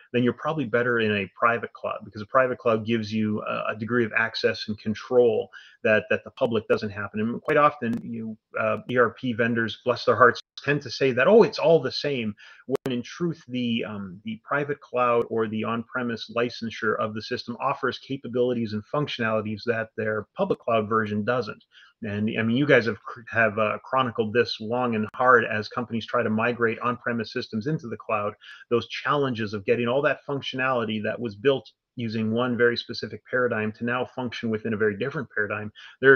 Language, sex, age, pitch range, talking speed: English, male, 30-49, 110-130 Hz, 195 wpm